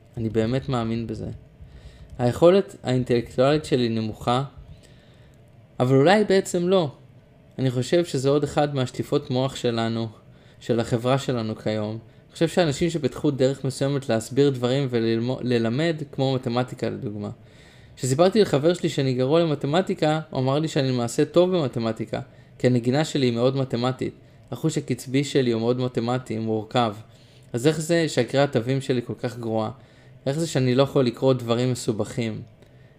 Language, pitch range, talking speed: Hebrew, 120-145 Hz, 145 wpm